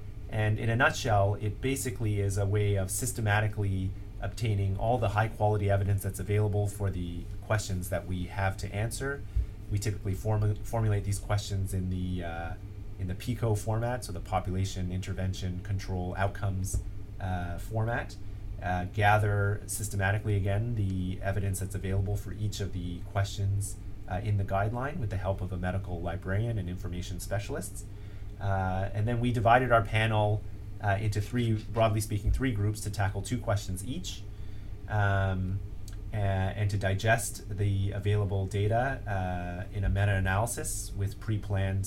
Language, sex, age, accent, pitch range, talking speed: English, male, 30-49, American, 95-105 Hz, 150 wpm